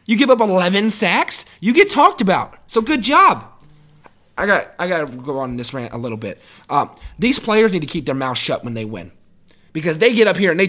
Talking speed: 240 wpm